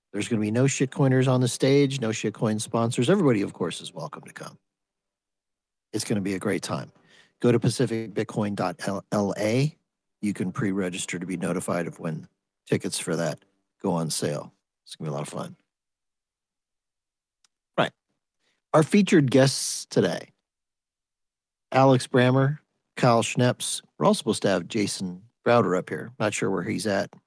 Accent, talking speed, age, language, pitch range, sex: American, 165 wpm, 50-69, English, 105-135 Hz, male